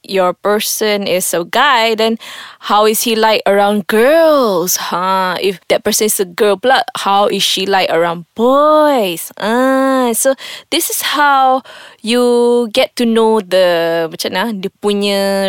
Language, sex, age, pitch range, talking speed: English, female, 20-39, 200-265 Hz, 145 wpm